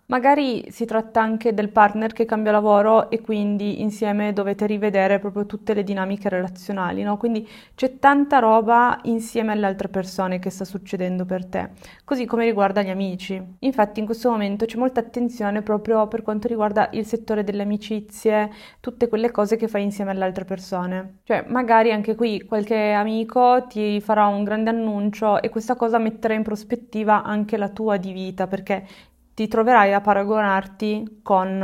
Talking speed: 170 wpm